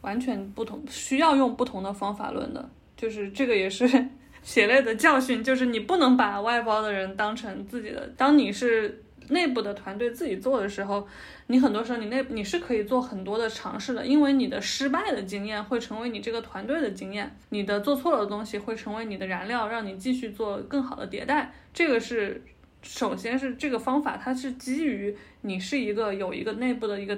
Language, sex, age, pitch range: Chinese, female, 20-39, 205-260 Hz